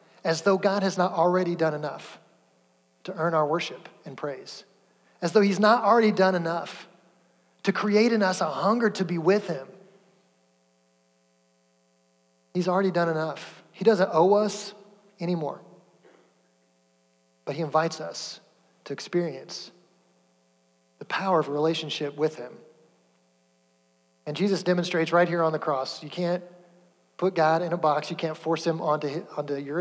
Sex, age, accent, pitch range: male, 30-49, American, 135-190 Hz